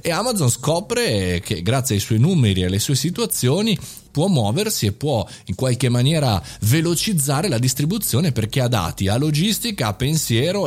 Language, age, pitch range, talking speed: Italian, 30-49, 105-140 Hz, 165 wpm